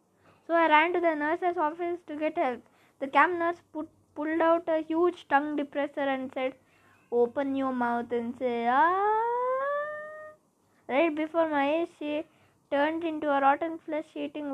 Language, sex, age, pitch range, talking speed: English, female, 20-39, 275-330 Hz, 160 wpm